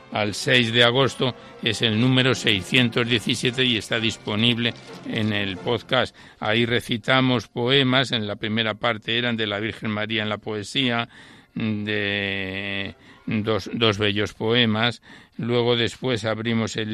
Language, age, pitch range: Spanish, 60-79, 110-120 Hz